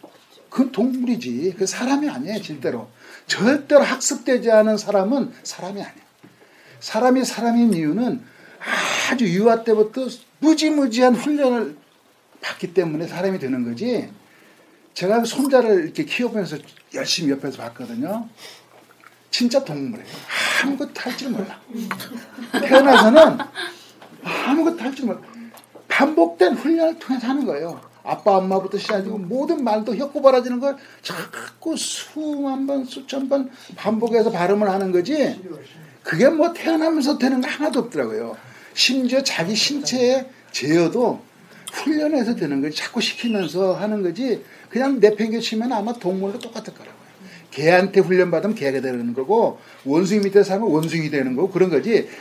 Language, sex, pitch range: Korean, male, 190-270 Hz